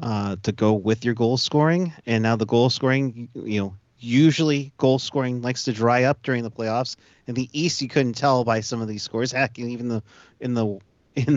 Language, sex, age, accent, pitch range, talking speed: English, male, 30-49, American, 110-135 Hz, 220 wpm